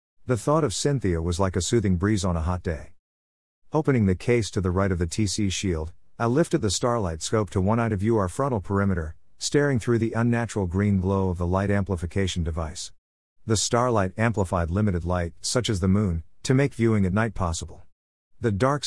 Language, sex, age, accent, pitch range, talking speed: English, male, 50-69, American, 85-115 Hz, 205 wpm